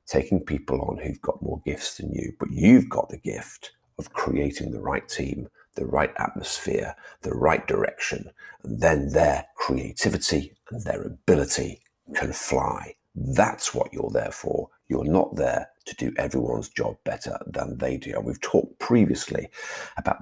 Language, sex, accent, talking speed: English, male, British, 165 wpm